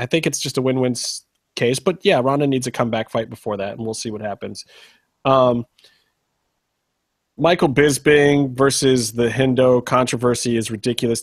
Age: 30-49